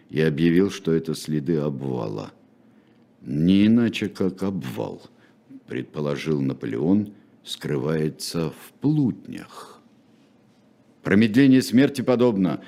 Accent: native